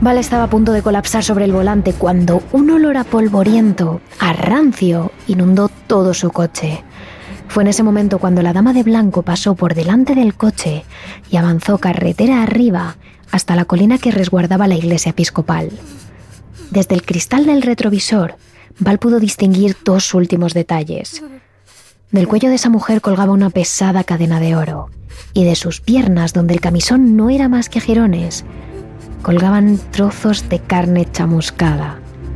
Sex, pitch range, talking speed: female, 175-225 Hz, 160 wpm